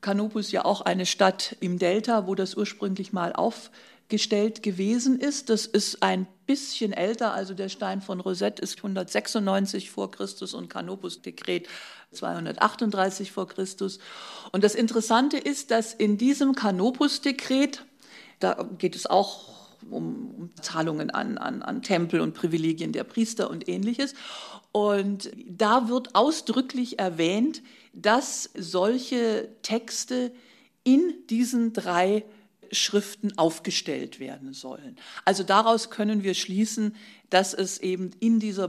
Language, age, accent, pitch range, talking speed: German, 50-69, German, 180-230 Hz, 125 wpm